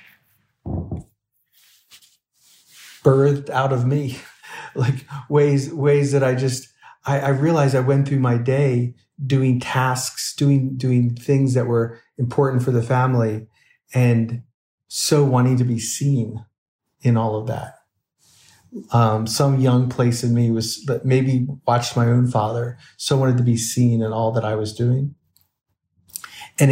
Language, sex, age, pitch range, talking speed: English, male, 40-59, 115-130 Hz, 145 wpm